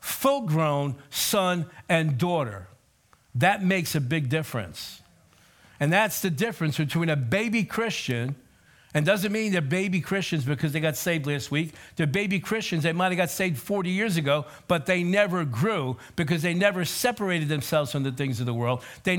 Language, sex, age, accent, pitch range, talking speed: English, male, 50-69, American, 140-185 Hz, 175 wpm